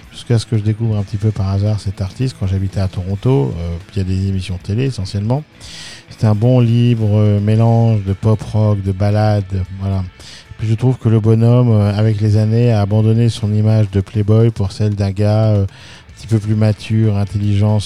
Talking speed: 210 wpm